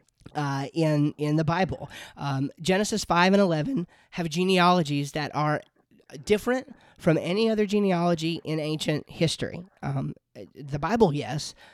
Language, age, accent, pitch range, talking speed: English, 30-49, American, 150-190 Hz, 135 wpm